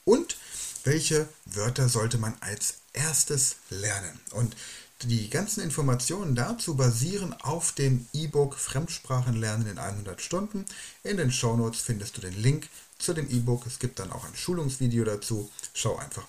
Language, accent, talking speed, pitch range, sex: German, German, 145 wpm, 115-145 Hz, male